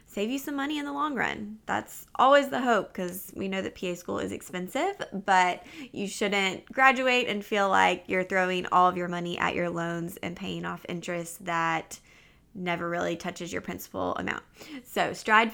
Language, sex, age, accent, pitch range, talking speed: English, female, 20-39, American, 180-245 Hz, 190 wpm